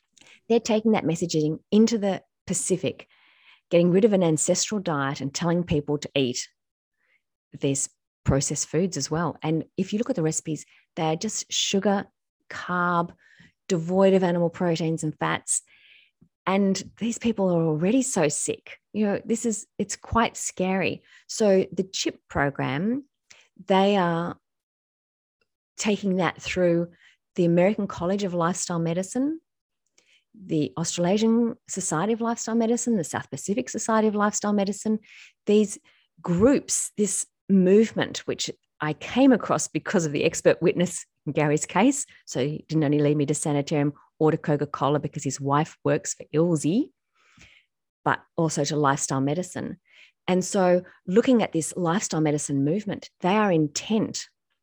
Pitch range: 150-205 Hz